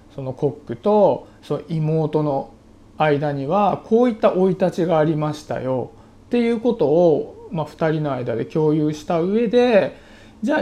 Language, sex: Japanese, male